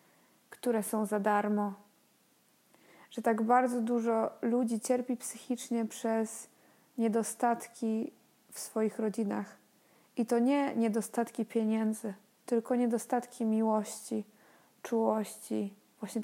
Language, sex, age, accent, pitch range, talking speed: Polish, female, 20-39, native, 220-240 Hz, 95 wpm